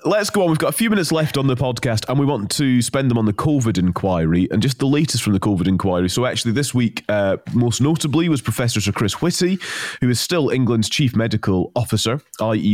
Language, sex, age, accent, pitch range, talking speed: English, male, 30-49, British, 100-130 Hz, 235 wpm